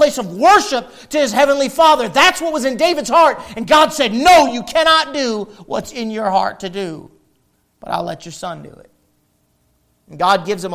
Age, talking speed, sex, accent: 40-59, 205 wpm, male, American